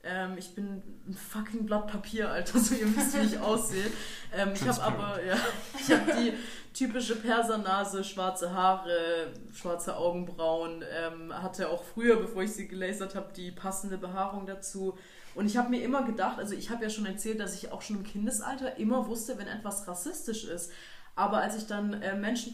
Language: German